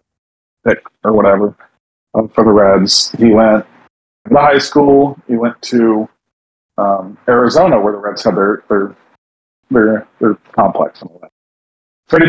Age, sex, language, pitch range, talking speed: 40-59, male, English, 105-145 Hz, 150 wpm